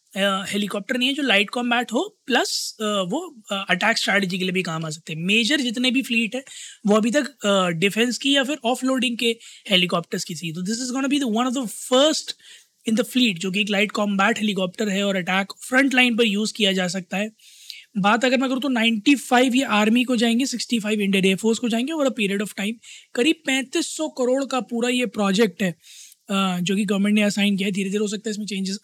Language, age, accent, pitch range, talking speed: Hindi, 20-39, native, 195-245 Hz, 235 wpm